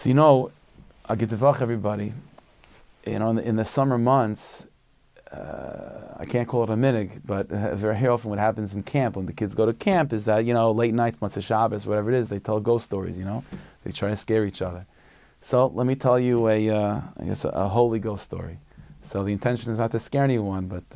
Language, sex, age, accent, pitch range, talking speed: English, male, 30-49, American, 100-120 Hz, 235 wpm